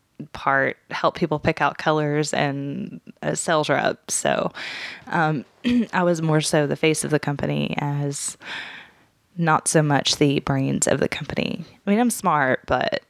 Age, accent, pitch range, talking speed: 10-29, American, 145-175 Hz, 165 wpm